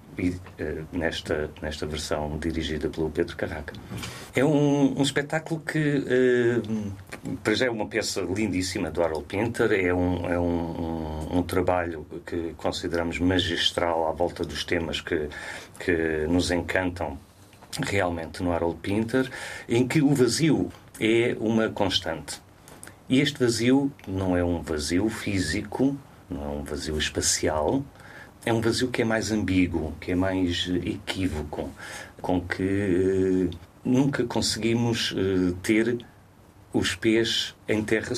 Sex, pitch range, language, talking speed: male, 85-110 Hz, Portuguese, 125 wpm